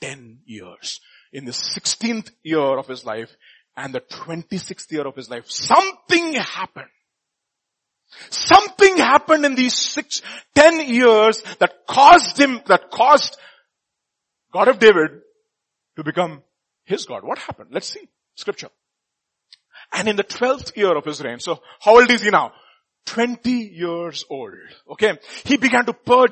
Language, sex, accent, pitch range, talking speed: English, male, Indian, 205-250 Hz, 145 wpm